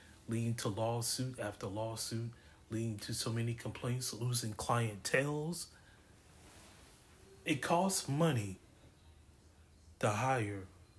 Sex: male